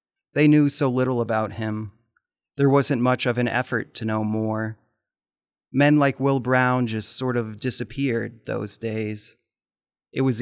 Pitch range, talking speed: 115-130 Hz, 155 wpm